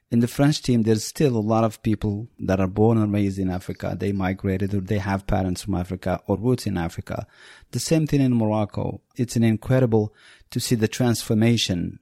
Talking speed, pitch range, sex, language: 205 wpm, 100-120 Hz, male, English